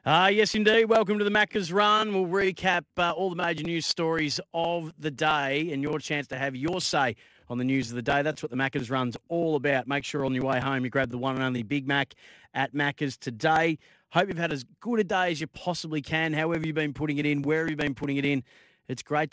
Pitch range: 135-160 Hz